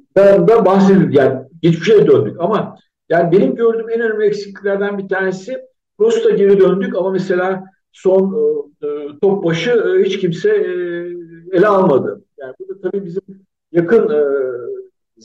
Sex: male